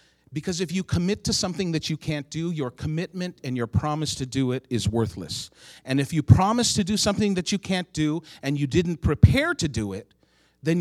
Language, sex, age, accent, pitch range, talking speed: English, male, 40-59, American, 135-215 Hz, 215 wpm